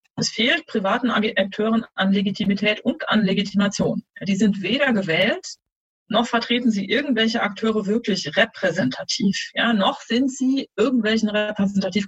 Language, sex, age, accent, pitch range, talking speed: German, female, 30-49, German, 200-235 Hz, 125 wpm